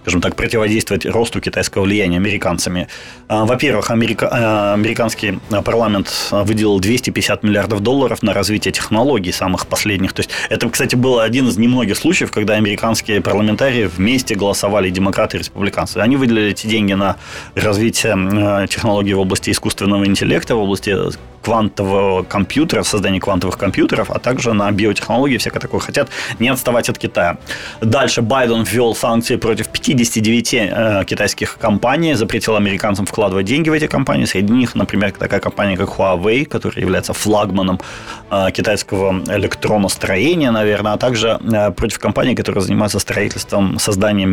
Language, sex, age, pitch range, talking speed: Ukrainian, male, 20-39, 100-115 Hz, 145 wpm